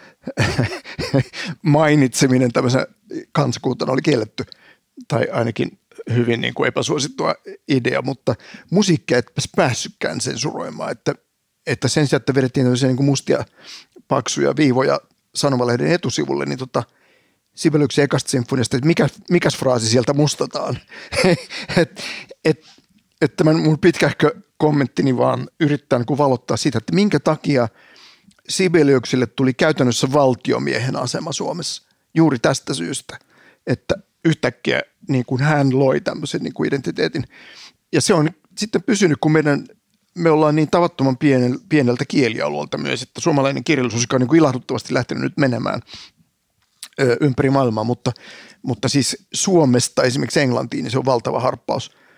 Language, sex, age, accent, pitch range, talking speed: Finnish, male, 50-69, native, 125-155 Hz, 130 wpm